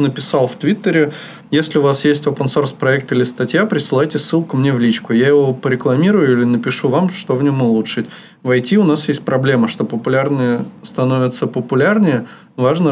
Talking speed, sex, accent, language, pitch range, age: 175 wpm, male, native, Russian, 115-145 Hz, 20-39